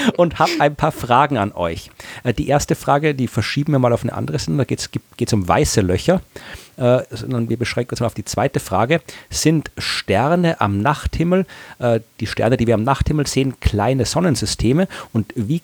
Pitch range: 105-135 Hz